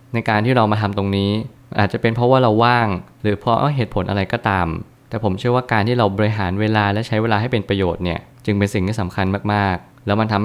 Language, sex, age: Thai, male, 20-39